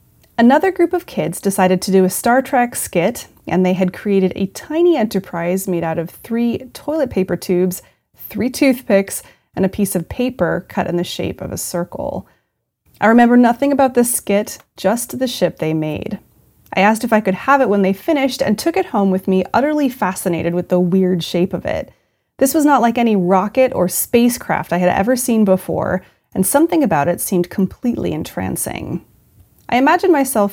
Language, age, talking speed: English, 30-49, 190 wpm